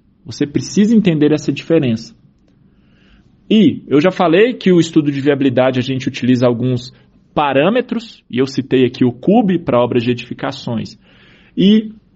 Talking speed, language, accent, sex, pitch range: 150 wpm, Portuguese, Brazilian, male, 140-185 Hz